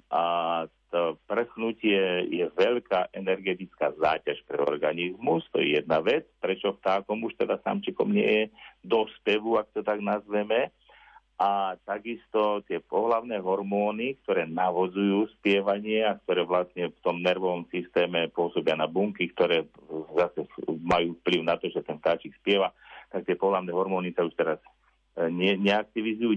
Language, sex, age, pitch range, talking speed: Slovak, male, 50-69, 90-110 Hz, 135 wpm